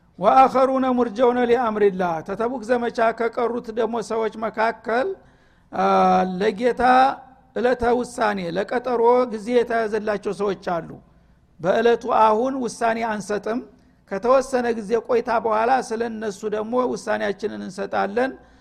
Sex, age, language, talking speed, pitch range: male, 60-79, Amharic, 115 wpm, 210-245 Hz